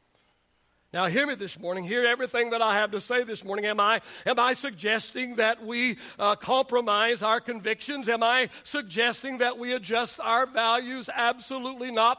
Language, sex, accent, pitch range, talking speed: English, male, American, 230-280 Hz, 170 wpm